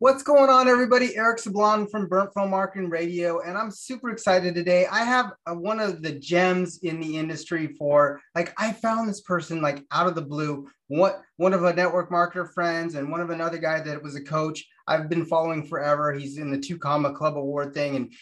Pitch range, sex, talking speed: 150-185 Hz, male, 220 wpm